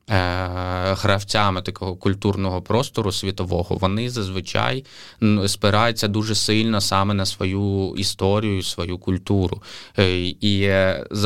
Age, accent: 20-39, native